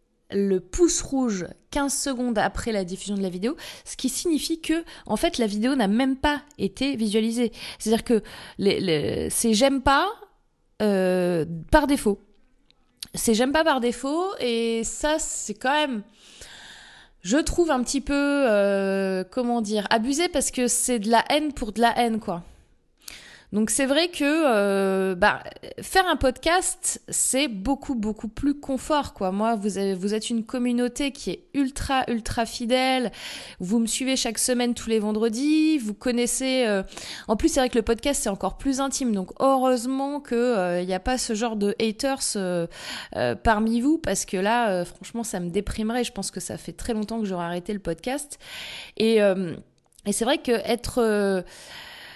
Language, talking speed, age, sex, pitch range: French, 180 wpm, 20-39, female, 205-275 Hz